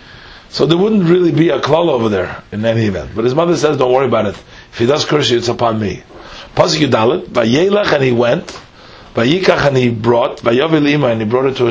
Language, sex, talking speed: English, male, 230 wpm